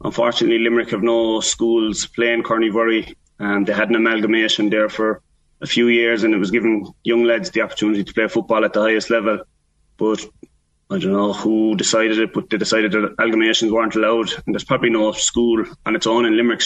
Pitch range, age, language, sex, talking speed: 105-115 Hz, 20-39, English, male, 200 wpm